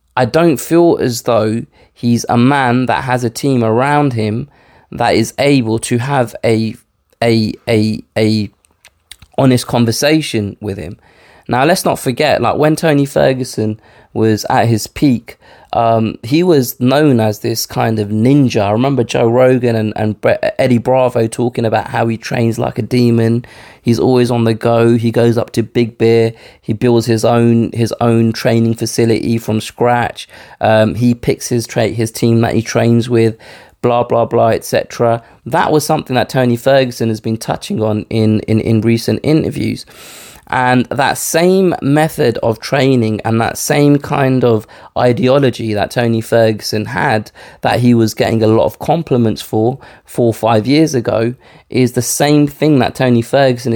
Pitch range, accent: 110-130 Hz, British